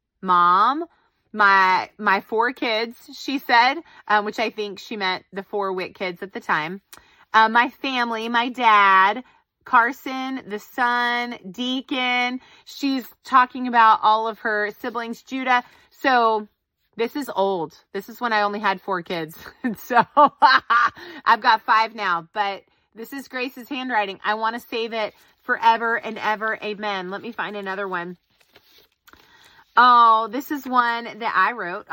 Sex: female